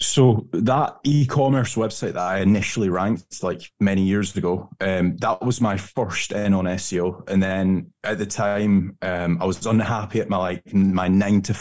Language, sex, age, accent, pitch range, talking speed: English, male, 20-39, British, 95-115 Hz, 180 wpm